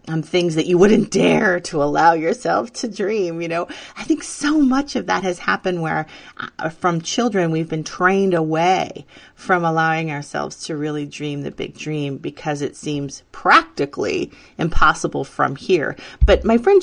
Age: 30-49